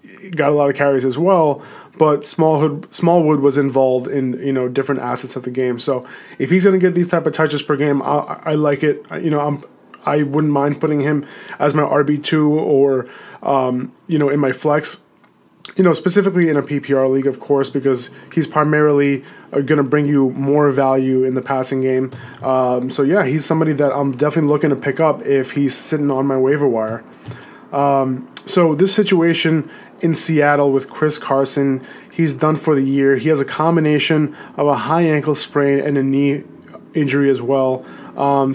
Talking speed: 195 wpm